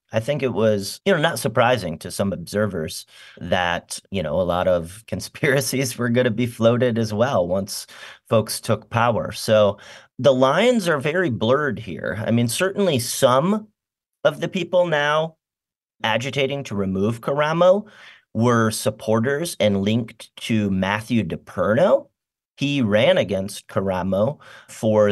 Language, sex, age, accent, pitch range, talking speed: English, male, 40-59, American, 105-130 Hz, 140 wpm